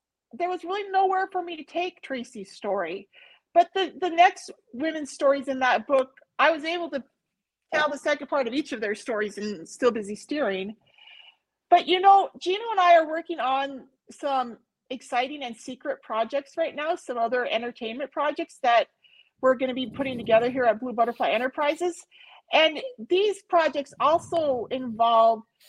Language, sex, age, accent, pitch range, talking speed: English, female, 40-59, American, 245-335 Hz, 170 wpm